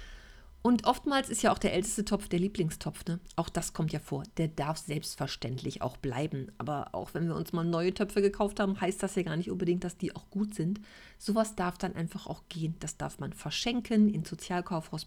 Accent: German